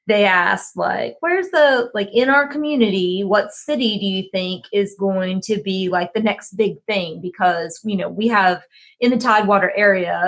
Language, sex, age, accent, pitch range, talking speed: English, female, 20-39, American, 190-225 Hz, 185 wpm